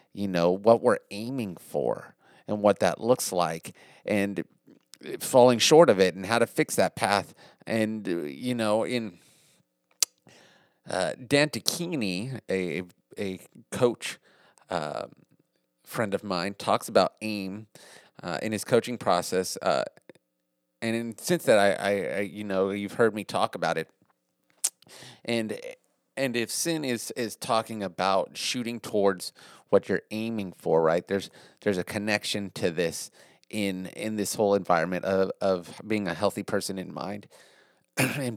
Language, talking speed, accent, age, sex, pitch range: English, 150 wpm, American, 30-49, male, 95-110 Hz